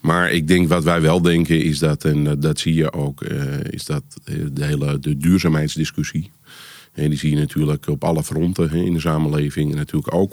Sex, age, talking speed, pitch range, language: male, 40-59, 200 wpm, 75-85 Hz, Dutch